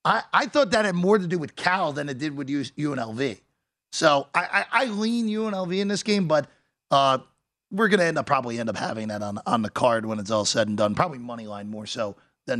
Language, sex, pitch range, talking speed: English, male, 145-215 Hz, 250 wpm